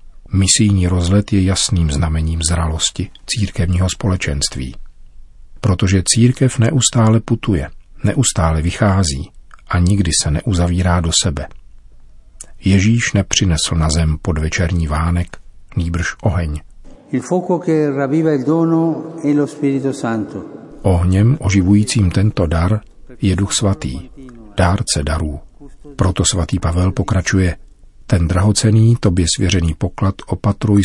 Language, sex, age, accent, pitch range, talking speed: Czech, male, 40-59, native, 85-110 Hz, 90 wpm